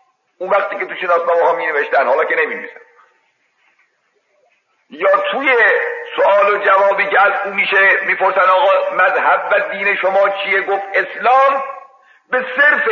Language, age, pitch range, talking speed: Persian, 50-69, 200-280 Hz, 135 wpm